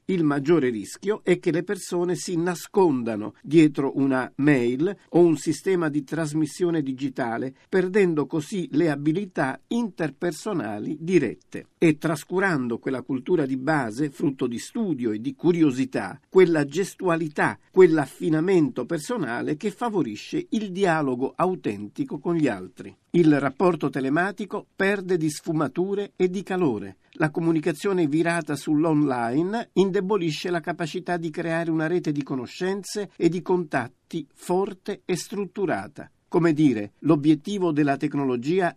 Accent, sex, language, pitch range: native, male, Italian, 135-180 Hz